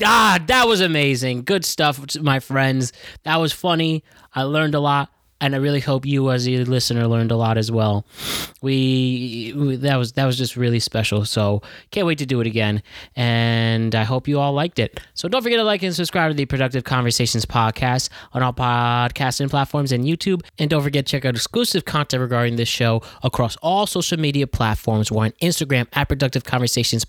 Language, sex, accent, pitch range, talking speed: English, male, American, 115-150 Hz, 200 wpm